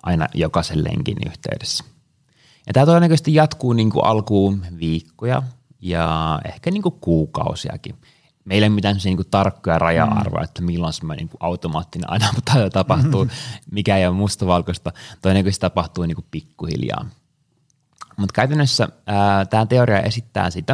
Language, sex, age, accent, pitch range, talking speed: Finnish, male, 20-39, native, 90-125 Hz, 135 wpm